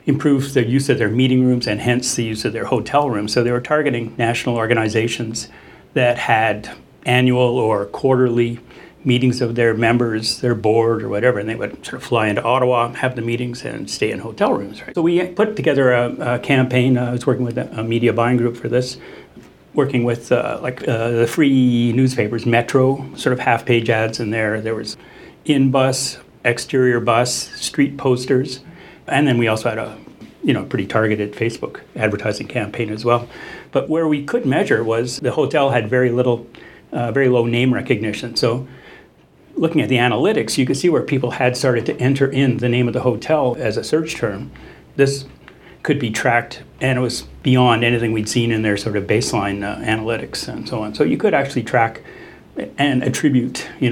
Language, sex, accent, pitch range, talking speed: English, male, American, 115-130 Hz, 195 wpm